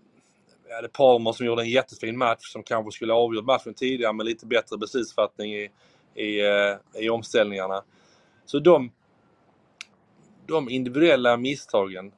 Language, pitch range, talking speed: Swedish, 105-130 Hz, 135 wpm